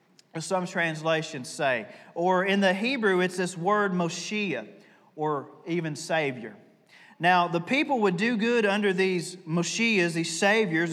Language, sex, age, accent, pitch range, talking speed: English, male, 30-49, American, 165-210 Hz, 135 wpm